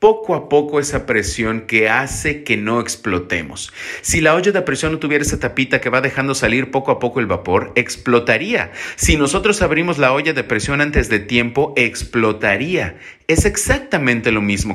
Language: English